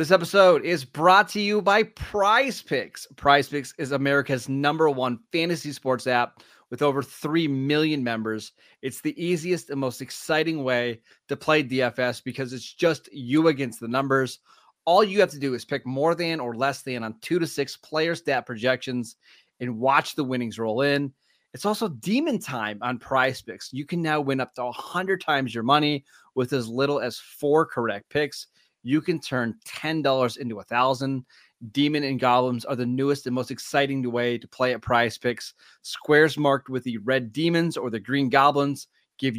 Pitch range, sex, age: 120-150 Hz, male, 30-49